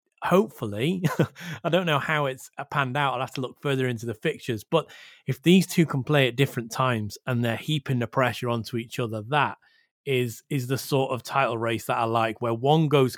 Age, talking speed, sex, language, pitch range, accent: 30-49, 215 wpm, male, English, 120-145 Hz, British